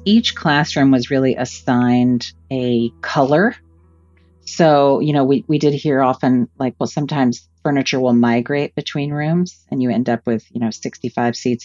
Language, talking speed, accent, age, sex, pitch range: English, 165 wpm, American, 40-59, female, 120-145 Hz